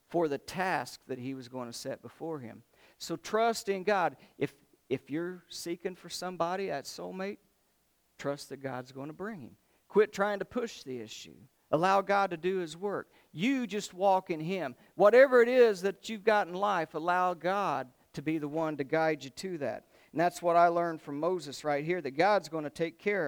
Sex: male